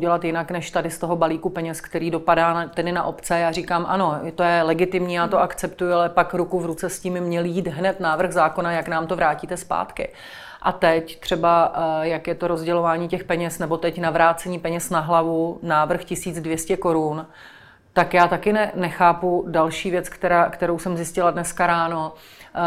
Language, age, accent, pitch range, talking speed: Czech, 30-49, native, 170-195 Hz, 185 wpm